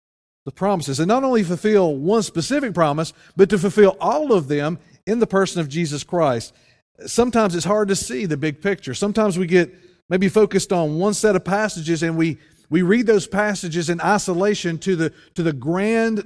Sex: male